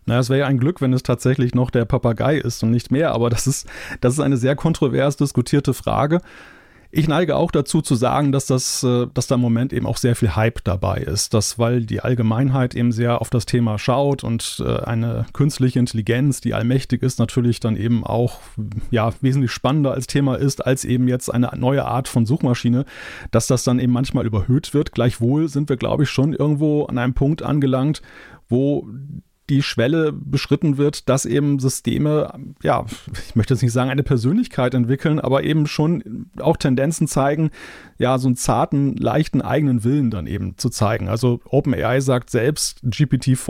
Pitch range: 120-140 Hz